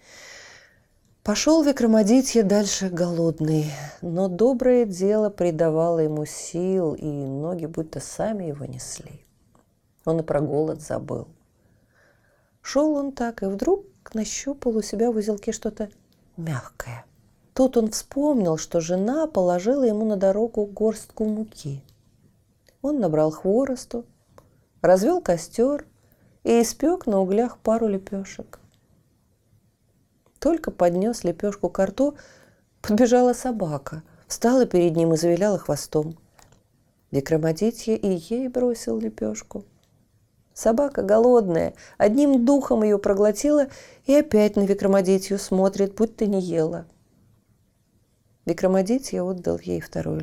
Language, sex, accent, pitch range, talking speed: Russian, female, native, 155-235 Hz, 110 wpm